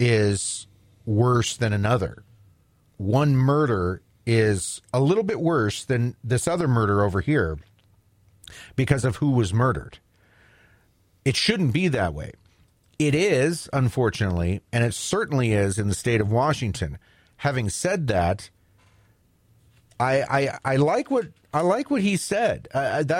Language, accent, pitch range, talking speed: English, American, 100-135 Hz, 135 wpm